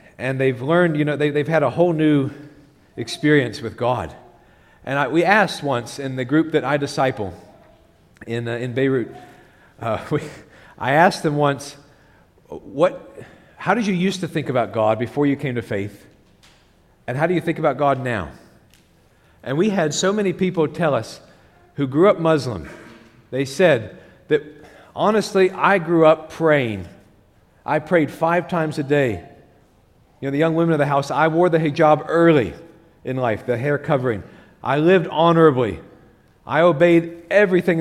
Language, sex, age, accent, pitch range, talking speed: English, male, 40-59, American, 135-180 Hz, 170 wpm